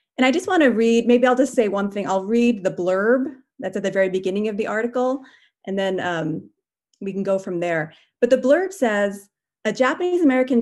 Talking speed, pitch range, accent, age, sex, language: 210 wpm, 190-250 Hz, American, 30-49, female, English